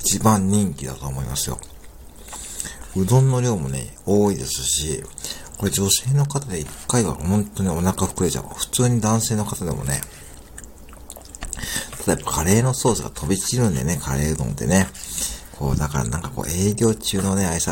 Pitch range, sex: 70-100 Hz, male